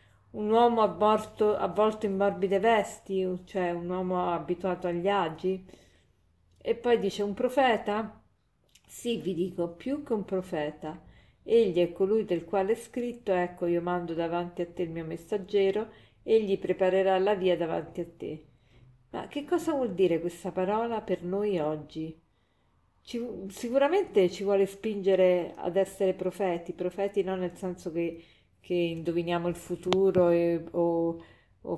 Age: 40-59